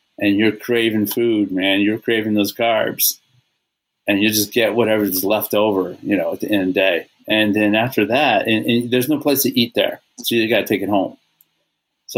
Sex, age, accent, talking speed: male, 30-49, American, 210 wpm